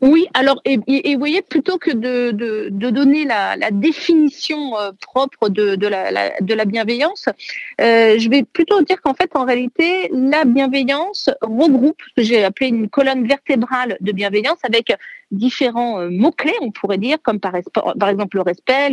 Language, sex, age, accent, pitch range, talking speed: French, female, 40-59, French, 225-290 Hz, 180 wpm